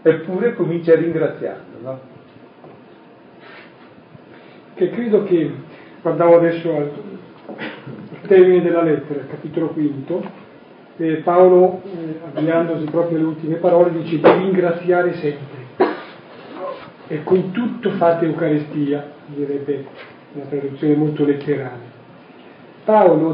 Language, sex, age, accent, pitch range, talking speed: Italian, male, 40-59, native, 150-185 Hz, 105 wpm